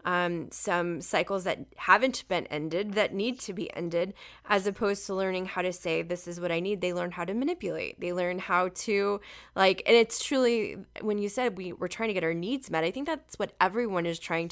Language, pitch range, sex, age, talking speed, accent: English, 175-210 Hz, female, 20-39, 225 wpm, American